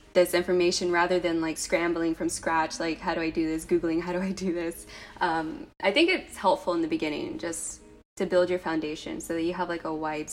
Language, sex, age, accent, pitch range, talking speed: English, female, 20-39, American, 170-190 Hz, 230 wpm